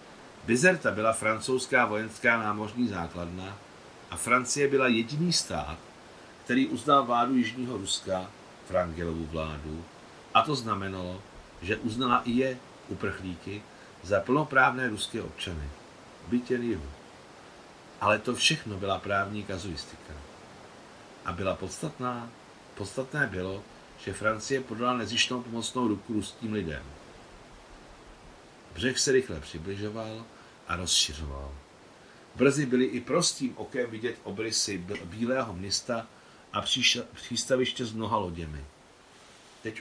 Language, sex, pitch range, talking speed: Czech, male, 90-120 Hz, 110 wpm